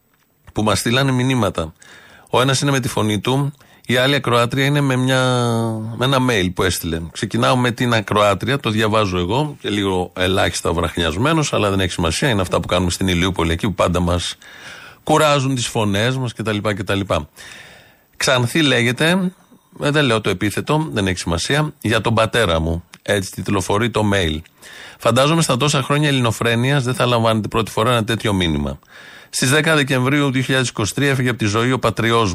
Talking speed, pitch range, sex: 175 wpm, 100-130 Hz, male